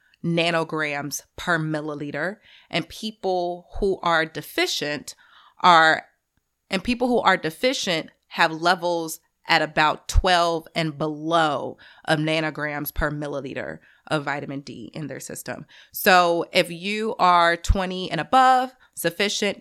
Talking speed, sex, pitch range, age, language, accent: 120 wpm, female, 155-185 Hz, 30-49, English, American